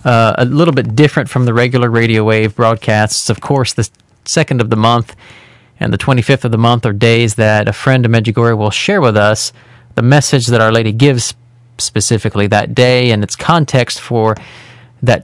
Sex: male